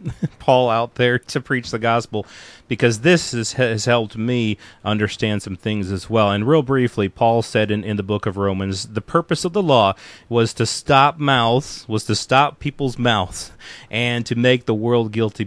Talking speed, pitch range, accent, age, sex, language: 190 wpm, 105-125 Hz, American, 30-49, male, English